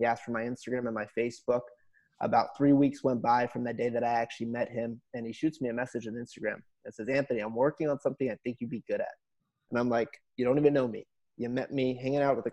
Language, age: English, 20-39